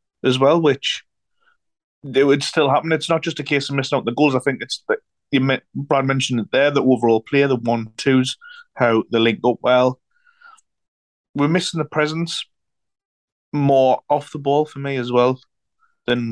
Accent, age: British, 30-49